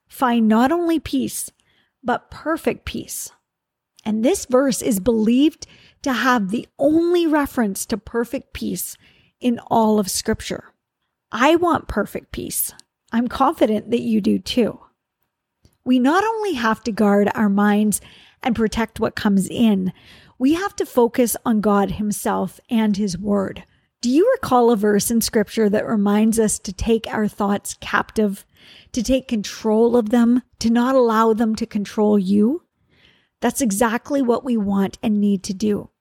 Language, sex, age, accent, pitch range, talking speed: English, female, 40-59, American, 210-255 Hz, 155 wpm